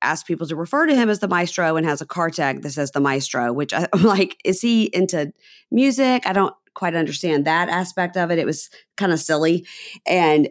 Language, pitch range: English, 145-190 Hz